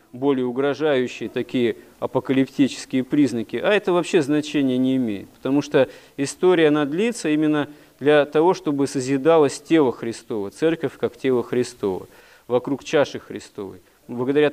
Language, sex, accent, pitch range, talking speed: Russian, male, native, 125-155 Hz, 130 wpm